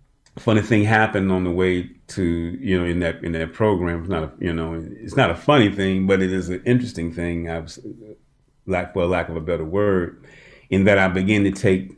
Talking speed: 220 wpm